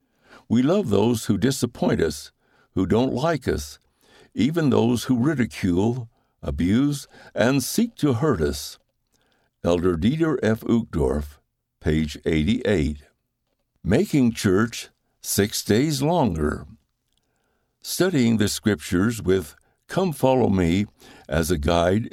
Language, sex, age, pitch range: English, male, 60-79, 85-125 Hz